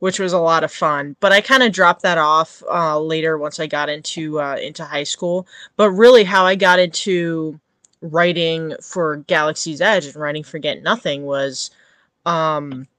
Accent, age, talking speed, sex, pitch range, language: American, 20-39, 185 wpm, female, 155-190 Hz, English